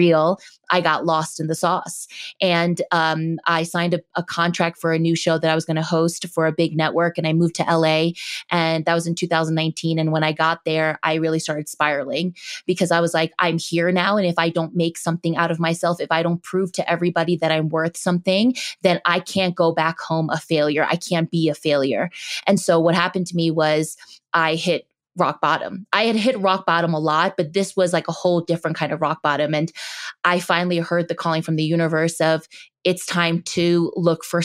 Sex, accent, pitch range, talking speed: female, American, 160-180 Hz, 225 wpm